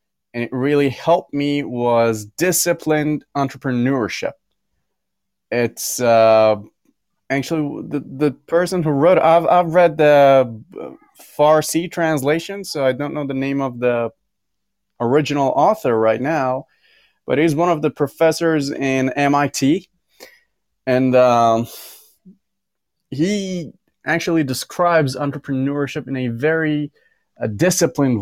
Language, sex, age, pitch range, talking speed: English, male, 30-49, 120-155 Hz, 115 wpm